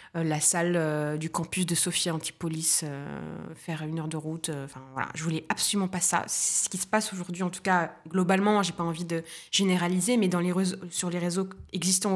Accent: French